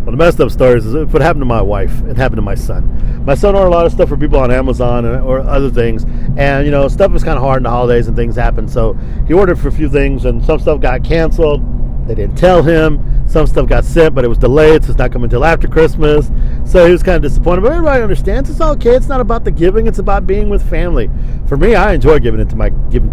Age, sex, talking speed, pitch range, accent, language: 50-69, male, 270 wpm, 120-155 Hz, American, English